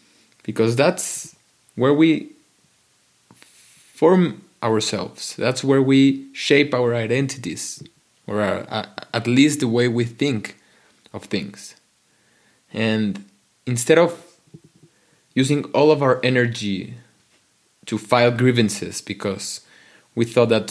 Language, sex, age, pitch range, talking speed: English, male, 20-39, 105-130 Hz, 105 wpm